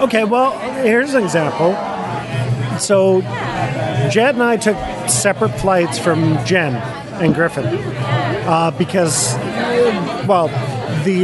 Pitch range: 135-195 Hz